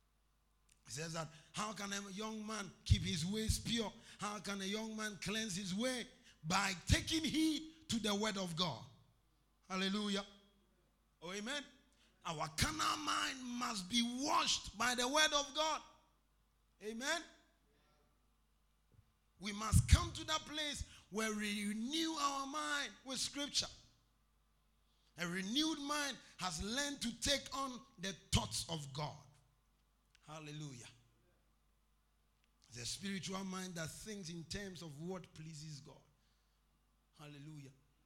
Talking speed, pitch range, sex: 130 wpm, 145-220 Hz, male